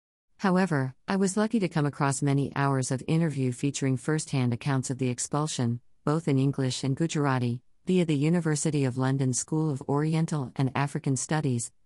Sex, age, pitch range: female, 40-59, 130-160 Hz